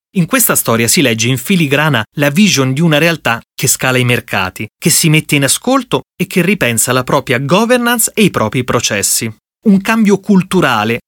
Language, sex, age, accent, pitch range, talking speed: Italian, male, 30-49, native, 130-200 Hz, 185 wpm